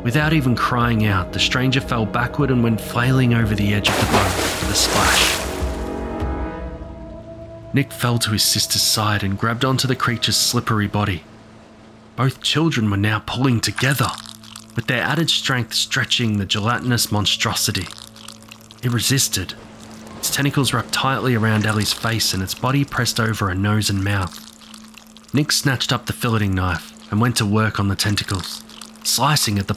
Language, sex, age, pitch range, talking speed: English, male, 20-39, 100-125 Hz, 165 wpm